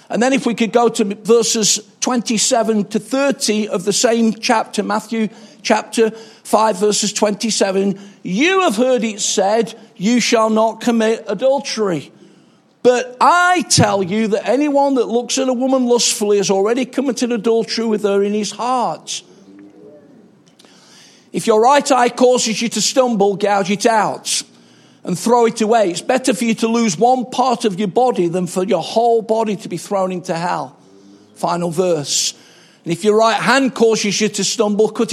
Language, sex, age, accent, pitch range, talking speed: English, male, 50-69, British, 200-240 Hz, 170 wpm